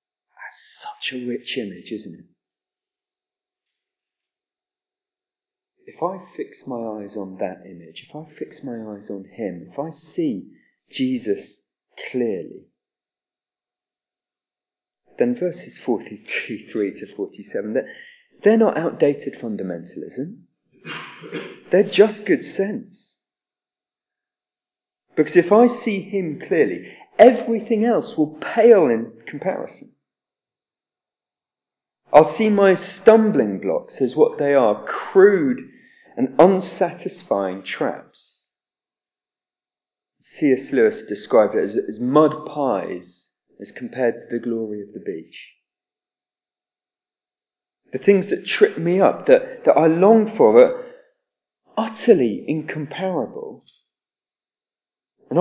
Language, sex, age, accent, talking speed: English, male, 30-49, British, 105 wpm